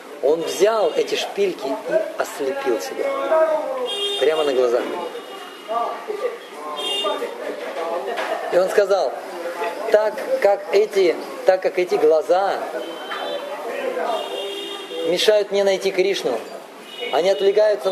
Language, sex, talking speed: Russian, male, 80 wpm